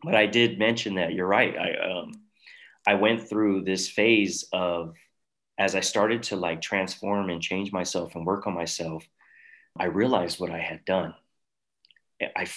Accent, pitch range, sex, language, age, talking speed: American, 85-115 Hz, male, English, 30-49, 165 wpm